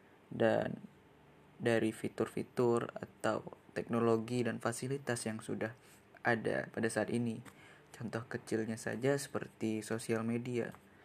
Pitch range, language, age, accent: 110-120 Hz, Indonesian, 20-39, native